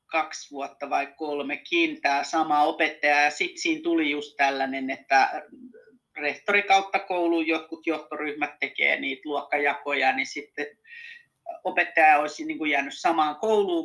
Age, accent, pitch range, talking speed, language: 30-49, native, 155-240 Hz, 135 wpm, Finnish